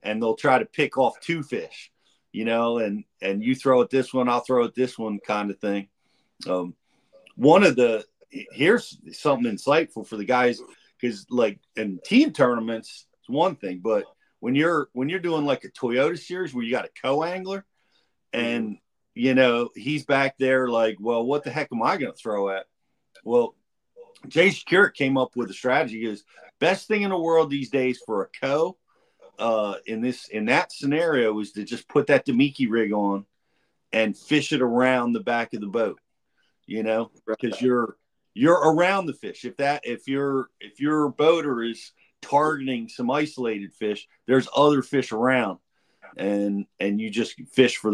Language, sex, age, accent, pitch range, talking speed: English, male, 50-69, American, 110-140 Hz, 185 wpm